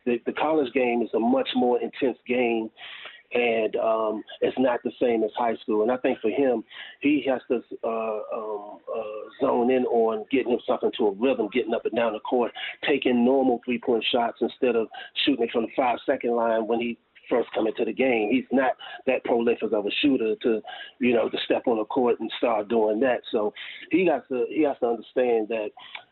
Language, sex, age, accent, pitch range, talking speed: English, male, 40-59, American, 110-130 Hz, 210 wpm